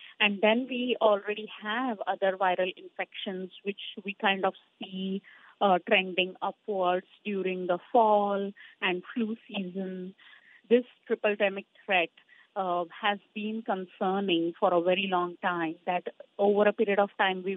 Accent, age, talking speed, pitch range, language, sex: Indian, 30-49, 145 wpm, 185-220 Hz, English, female